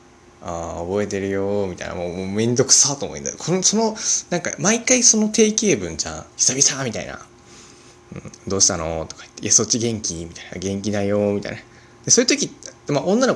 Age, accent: 20-39, native